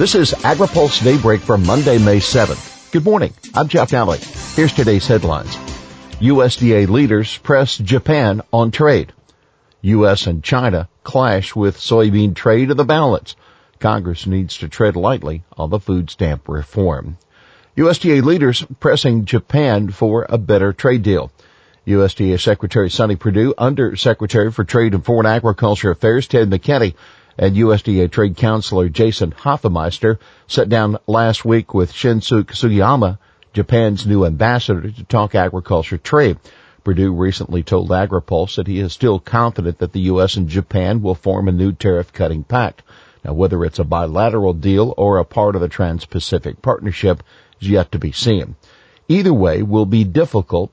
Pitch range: 95-115 Hz